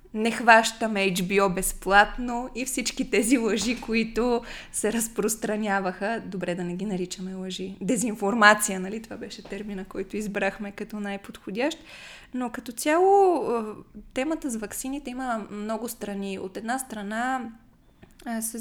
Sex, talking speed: female, 125 wpm